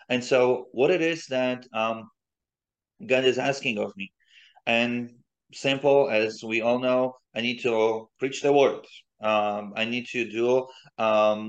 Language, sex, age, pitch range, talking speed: English, male, 30-49, 105-125 Hz, 155 wpm